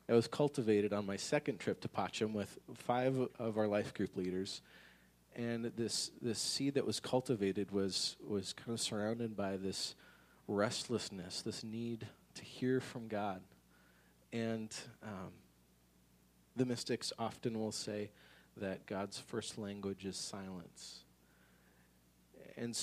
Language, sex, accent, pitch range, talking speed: English, male, American, 95-115 Hz, 135 wpm